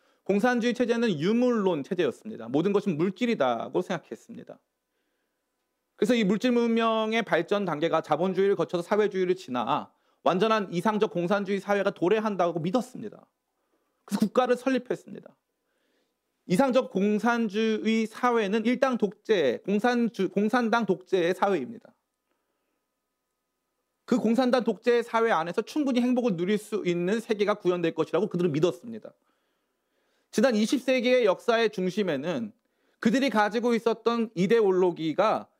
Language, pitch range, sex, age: Korean, 190-240 Hz, male, 40-59